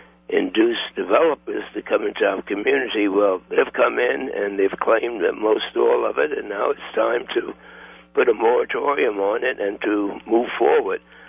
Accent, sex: American, male